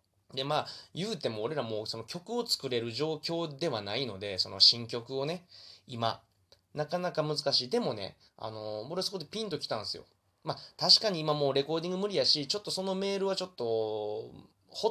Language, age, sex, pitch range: Japanese, 20-39, male, 110-155 Hz